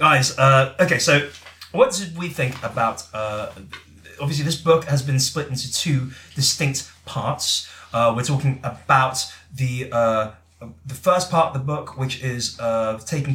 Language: English